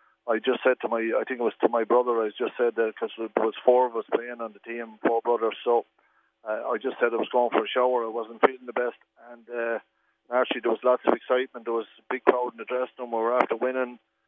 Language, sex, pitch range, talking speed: English, male, 115-125 Hz, 275 wpm